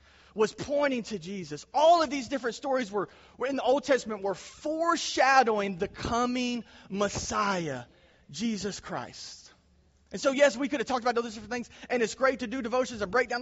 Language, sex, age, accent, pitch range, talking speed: English, male, 30-49, American, 140-235 Hz, 190 wpm